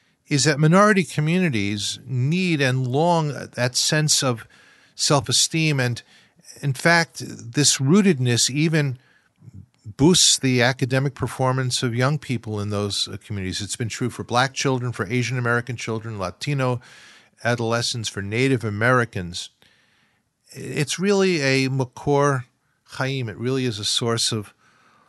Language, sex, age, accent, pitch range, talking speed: English, male, 50-69, American, 110-145 Hz, 125 wpm